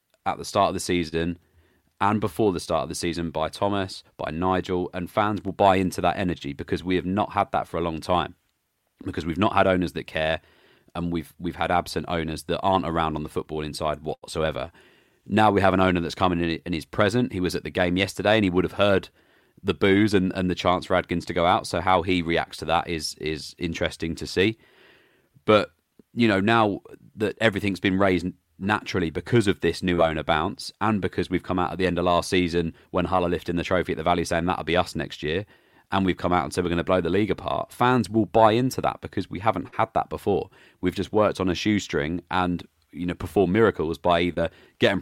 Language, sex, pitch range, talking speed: English, male, 85-95 Hz, 235 wpm